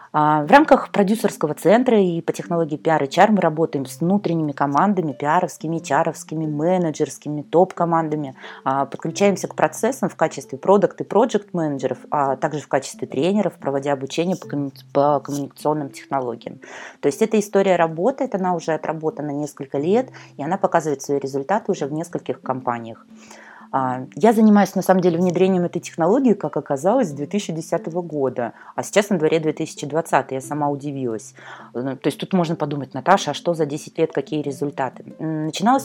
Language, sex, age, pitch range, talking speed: Russian, female, 20-39, 145-185 Hz, 150 wpm